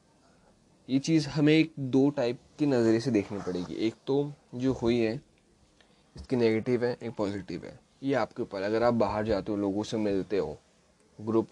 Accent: native